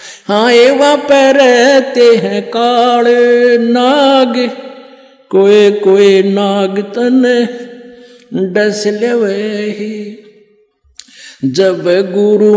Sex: male